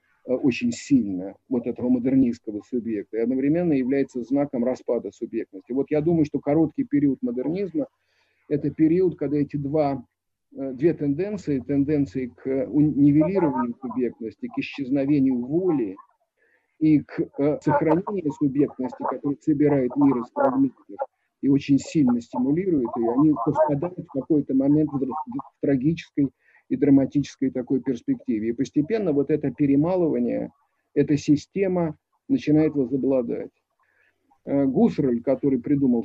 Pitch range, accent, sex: 135-165 Hz, native, male